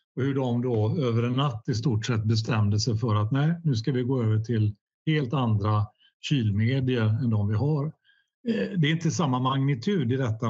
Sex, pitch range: male, 115-155 Hz